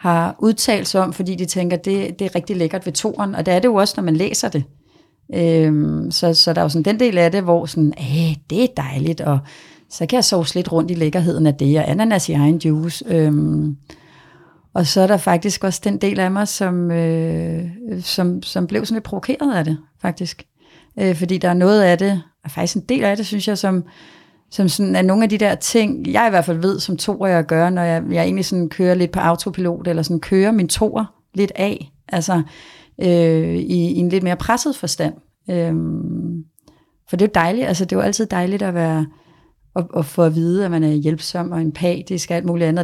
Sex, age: female, 30-49